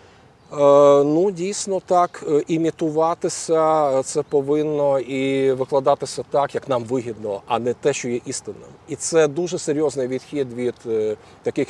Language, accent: Ukrainian, native